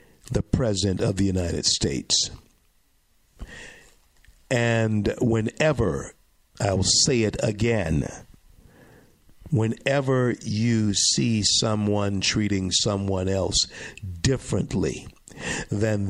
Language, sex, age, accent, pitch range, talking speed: English, male, 50-69, American, 100-120 Hz, 80 wpm